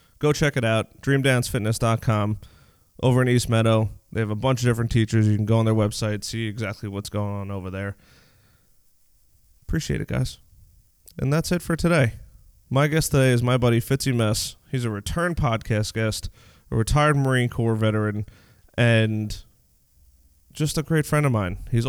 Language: English